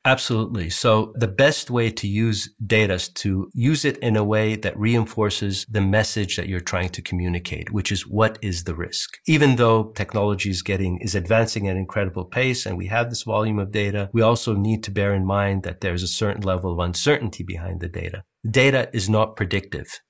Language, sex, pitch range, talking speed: English, male, 95-115 Hz, 205 wpm